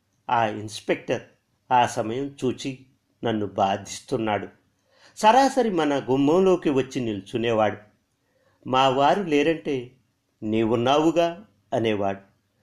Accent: native